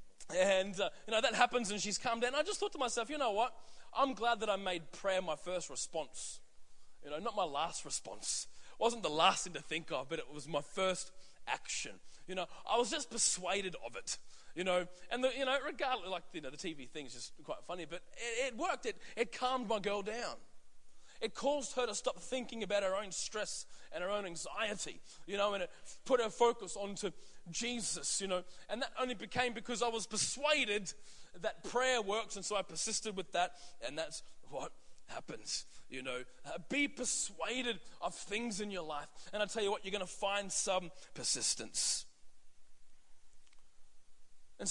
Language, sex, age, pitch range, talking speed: English, male, 20-39, 180-240 Hz, 200 wpm